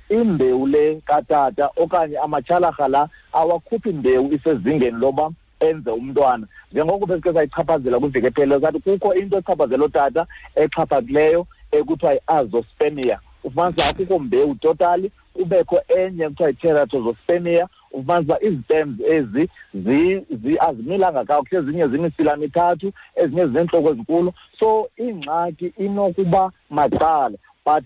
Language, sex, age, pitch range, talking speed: English, male, 50-69, 140-180 Hz, 125 wpm